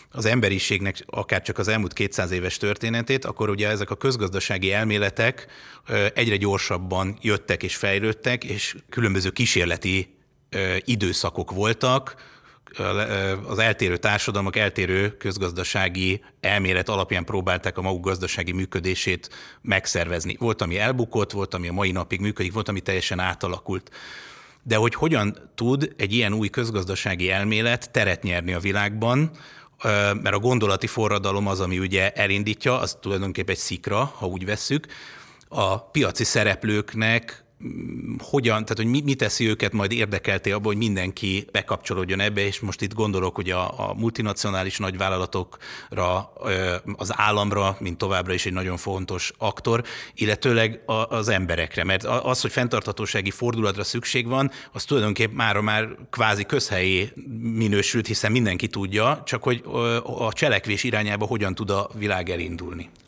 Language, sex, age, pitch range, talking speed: Hungarian, male, 30-49, 95-115 Hz, 135 wpm